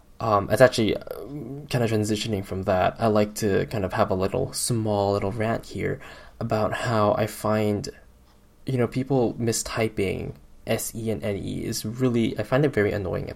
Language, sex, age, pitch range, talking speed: English, male, 10-29, 100-115 Hz, 170 wpm